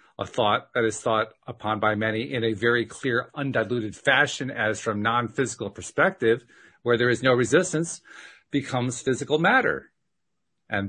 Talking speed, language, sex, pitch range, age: 150 wpm, English, male, 110-150 Hz, 40-59